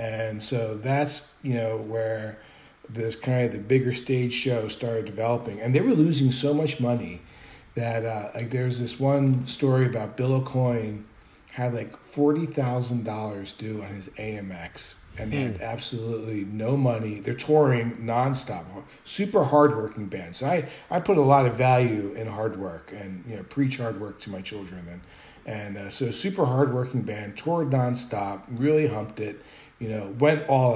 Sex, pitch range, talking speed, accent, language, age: male, 110-130 Hz, 175 wpm, American, English, 40-59